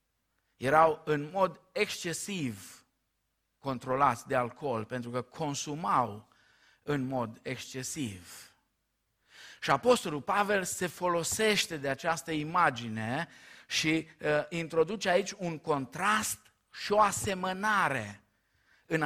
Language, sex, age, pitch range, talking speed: Romanian, male, 50-69, 130-185 Hz, 95 wpm